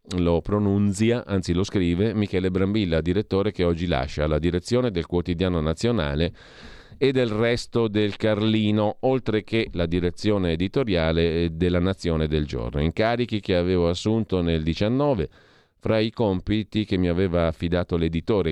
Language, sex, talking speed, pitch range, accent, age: Italian, male, 145 wpm, 80-100 Hz, native, 40-59